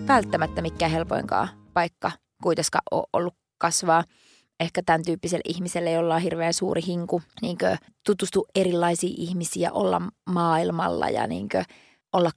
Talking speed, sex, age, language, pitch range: 120 wpm, female, 20-39, Finnish, 165-190 Hz